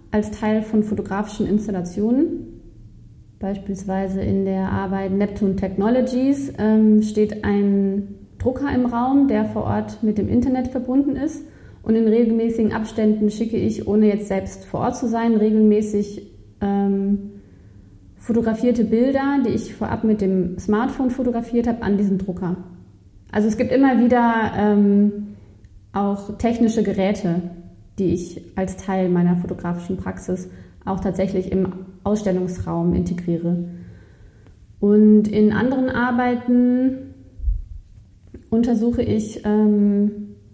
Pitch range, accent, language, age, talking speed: 180-230 Hz, German, German, 30-49, 120 wpm